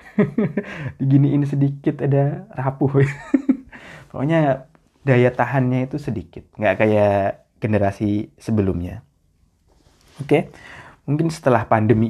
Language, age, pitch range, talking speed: Indonesian, 20-39, 100-130 Hz, 95 wpm